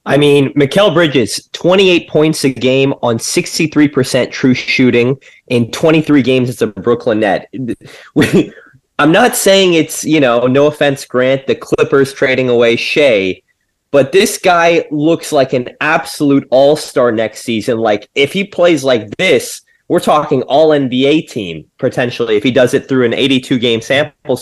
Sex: male